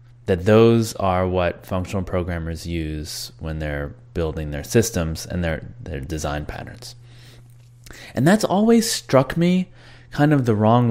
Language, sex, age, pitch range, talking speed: English, male, 20-39, 95-120 Hz, 145 wpm